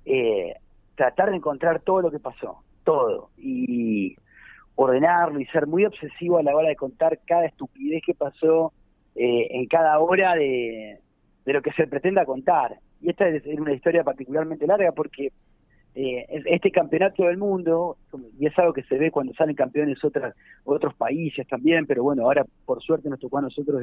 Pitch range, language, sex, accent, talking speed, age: 135-180 Hz, Spanish, male, Argentinian, 175 wpm, 40-59